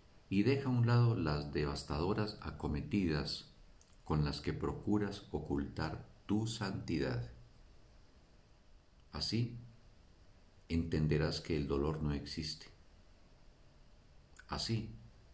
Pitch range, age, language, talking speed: 75-105 Hz, 50-69, Spanish, 90 wpm